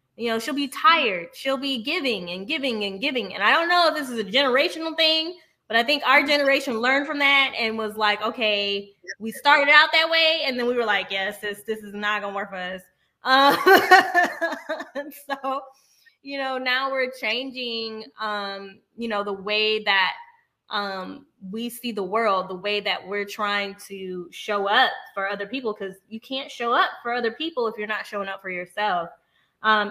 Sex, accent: female, American